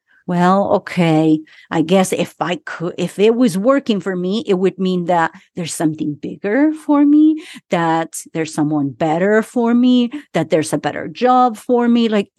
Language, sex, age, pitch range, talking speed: English, female, 40-59, 165-230 Hz, 175 wpm